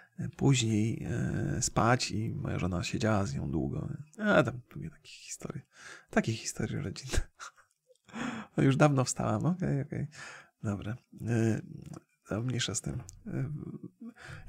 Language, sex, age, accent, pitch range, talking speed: Polish, male, 30-49, native, 115-150 Hz, 130 wpm